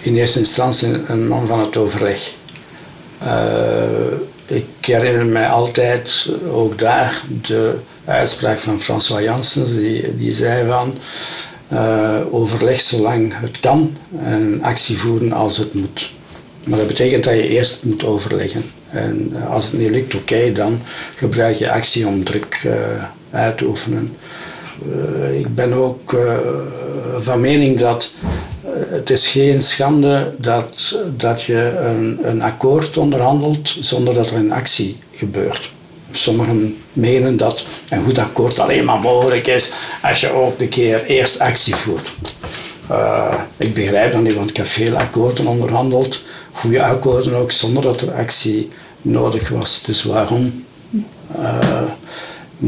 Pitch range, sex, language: 110-130 Hz, male, Dutch